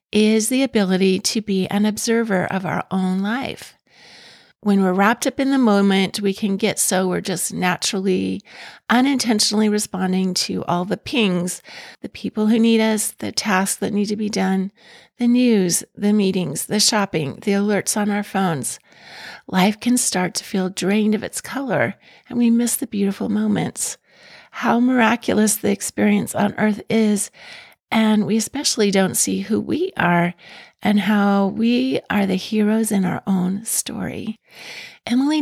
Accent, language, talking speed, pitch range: American, English, 160 wpm, 190-225 Hz